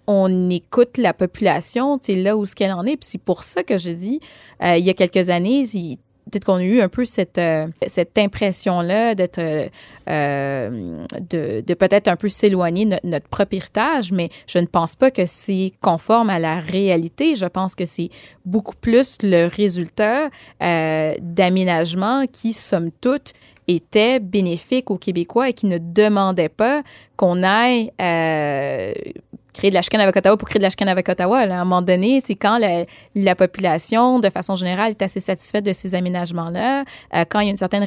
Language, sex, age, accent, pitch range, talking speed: French, female, 20-39, Canadian, 175-210 Hz, 195 wpm